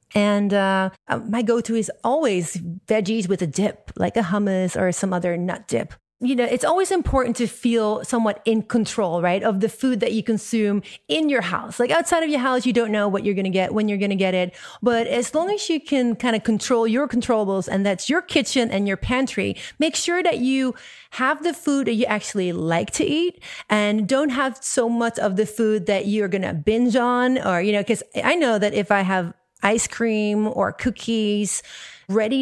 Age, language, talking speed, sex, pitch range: 30-49, English, 215 wpm, female, 200-250 Hz